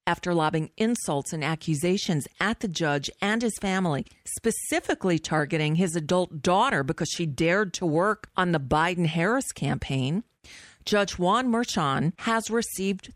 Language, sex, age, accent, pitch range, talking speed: English, female, 50-69, American, 150-205 Hz, 135 wpm